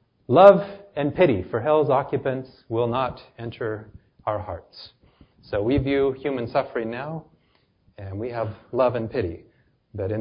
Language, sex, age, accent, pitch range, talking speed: English, male, 30-49, American, 115-145 Hz, 145 wpm